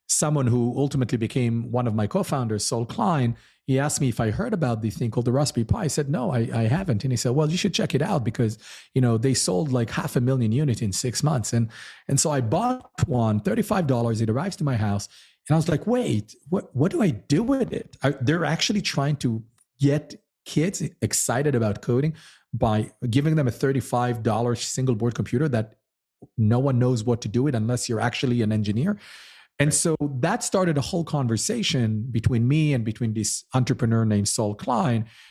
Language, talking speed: English, 205 wpm